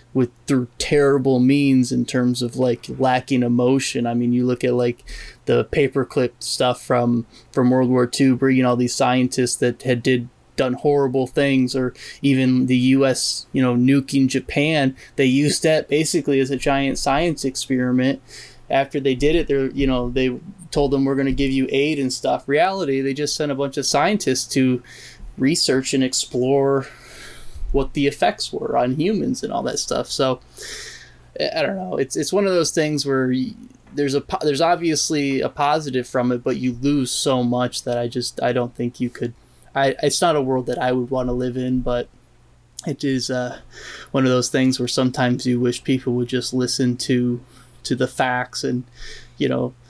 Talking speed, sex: 190 wpm, male